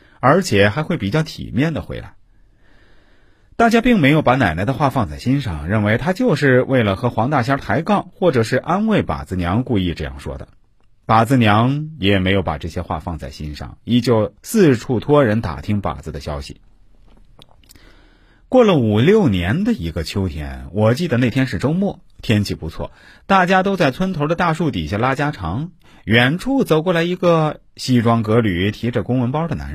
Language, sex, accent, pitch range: Chinese, male, native, 95-155 Hz